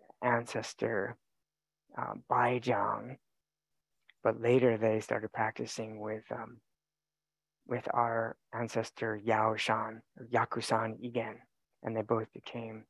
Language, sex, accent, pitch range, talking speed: English, male, American, 110-125 Hz, 100 wpm